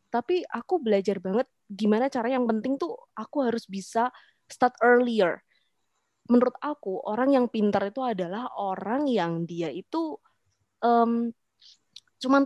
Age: 20-39